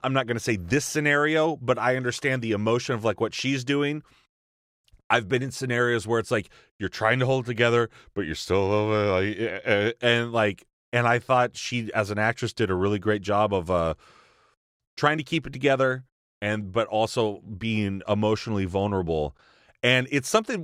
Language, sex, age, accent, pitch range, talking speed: English, male, 30-49, American, 105-130 Hz, 195 wpm